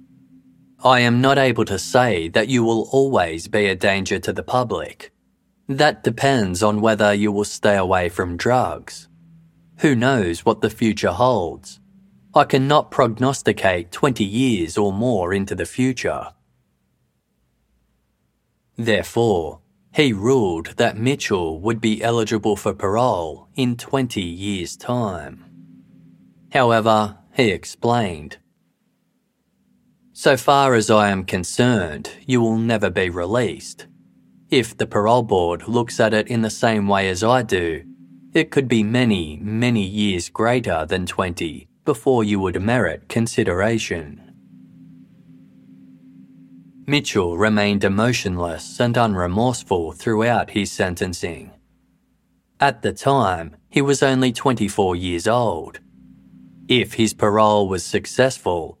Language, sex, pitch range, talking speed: English, male, 90-125 Hz, 120 wpm